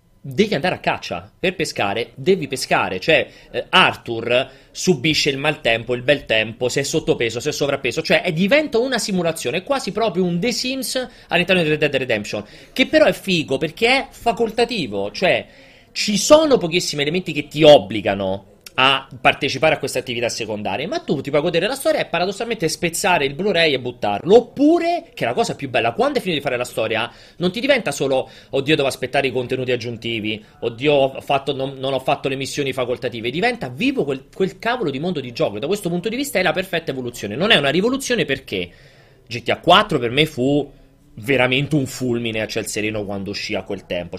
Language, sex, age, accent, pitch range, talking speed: Italian, male, 30-49, native, 130-185 Hz, 195 wpm